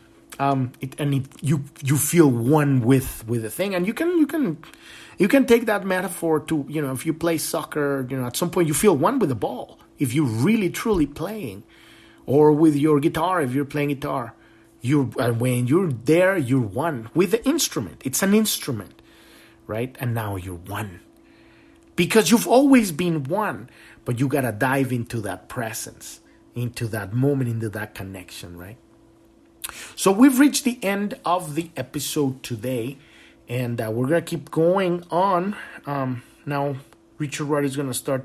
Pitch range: 120-155 Hz